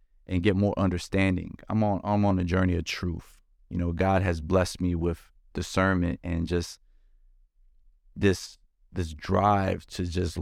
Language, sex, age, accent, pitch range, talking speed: English, male, 20-39, American, 80-95 Hz, 155 wpm